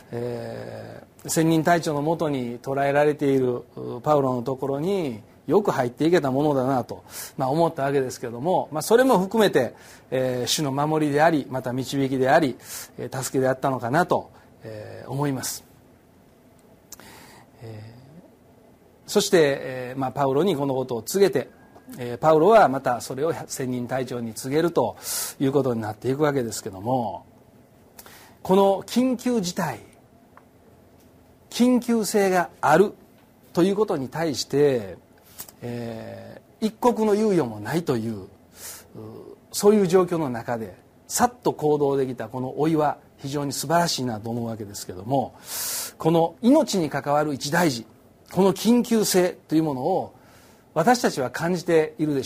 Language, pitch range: Japanese, 125-175 Hz